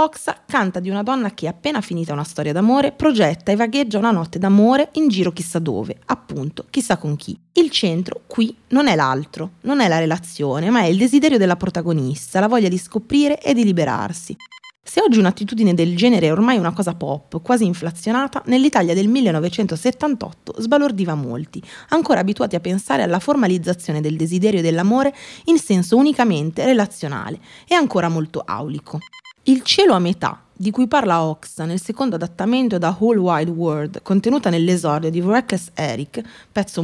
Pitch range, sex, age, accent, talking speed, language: 165-250 Hz, female, 20-39, native, 170 wpm, Italian